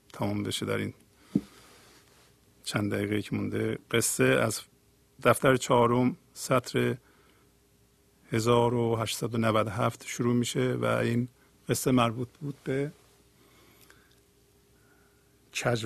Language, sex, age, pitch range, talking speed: Persian, male, 50-69, 110-135 Hz, 85 wpm